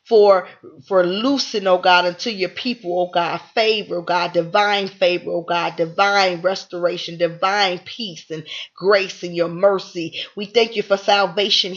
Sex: female